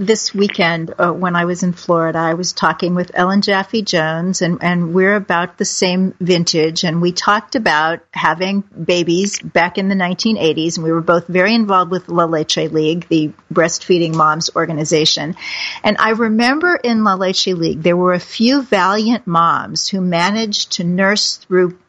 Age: 50-69